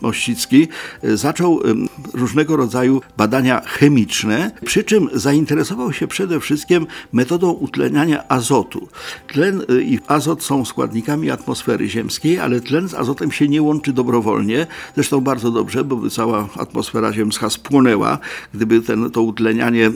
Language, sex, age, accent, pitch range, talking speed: Polish, male, 50-69, native, 115-155 Hz, 125 wpm